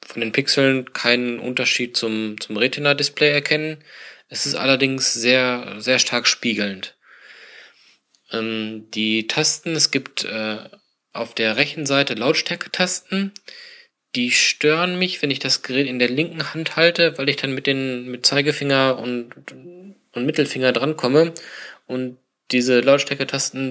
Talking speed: 140 wpm